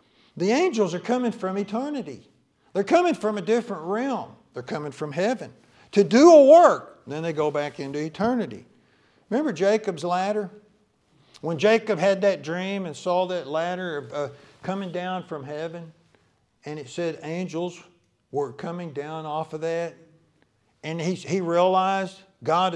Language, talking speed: English, 155 wpm